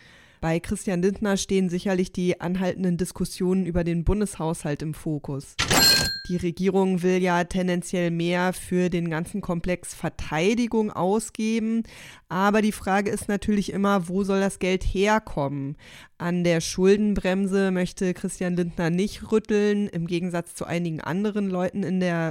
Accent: German